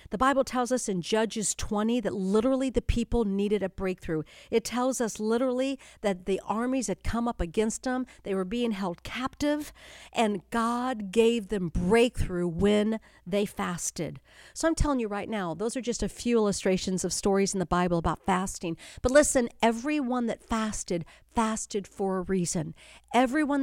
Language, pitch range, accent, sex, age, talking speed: English, 190-240 Hz, American, female, 50-69, 175 wpm